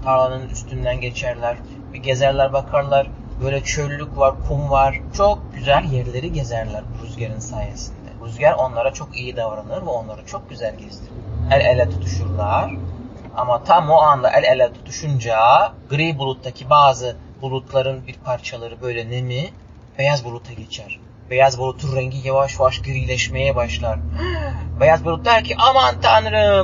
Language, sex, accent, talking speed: Turkish, male, native, 135 wpm